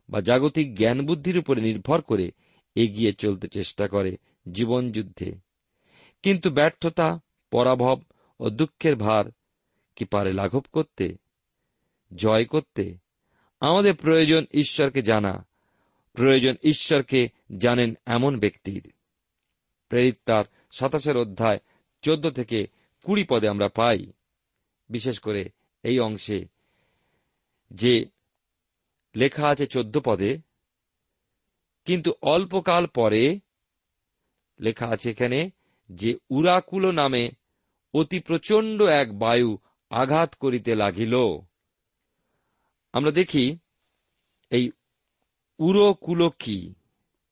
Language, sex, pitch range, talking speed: Bengali, male, 110-155 Hz, 90 wpm